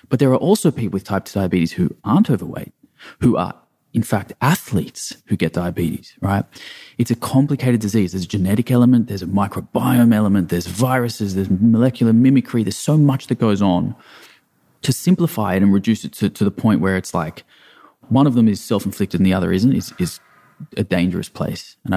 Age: 20-39